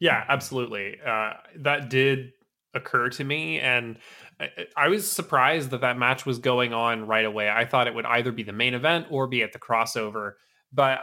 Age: 20-39